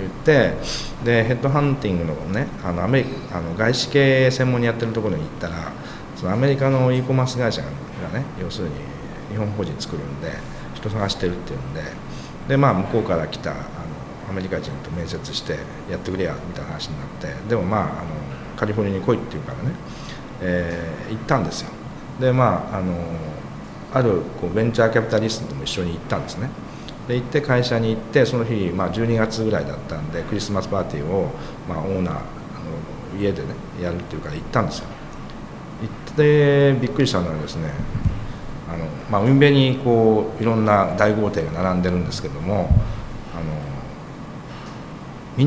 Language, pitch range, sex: Japanese, 90-130 Hz, male